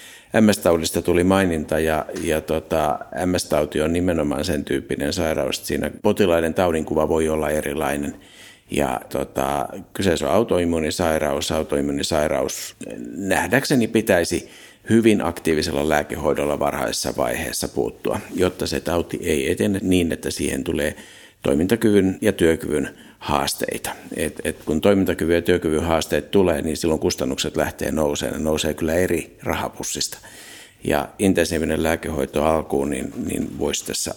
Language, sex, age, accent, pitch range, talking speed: Finnish, male, 60-79, native, 75-90 Hz, 130 wpm